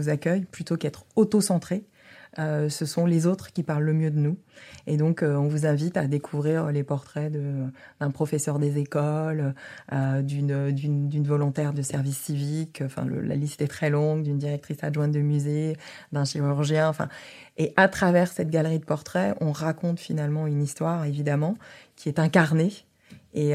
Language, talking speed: French, 175 wpm